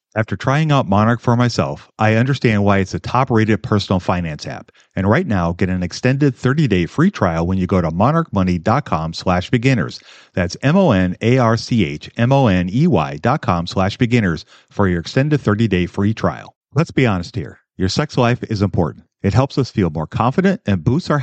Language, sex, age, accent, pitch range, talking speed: English, male, 40-59, American, 95-125 Hz, 165 wpm